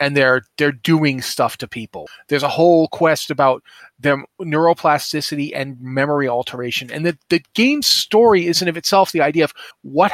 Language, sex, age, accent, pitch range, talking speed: English, male, 30-49, American, 140-175 Hz, 180 wpm